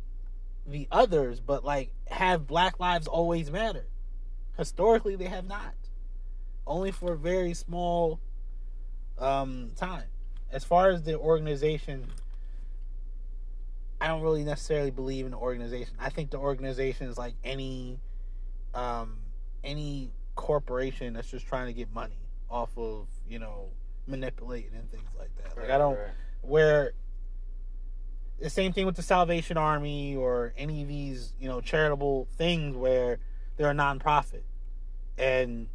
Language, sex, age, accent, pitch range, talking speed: English, male, 20-39, American, 95-160 Hz, 140 wpm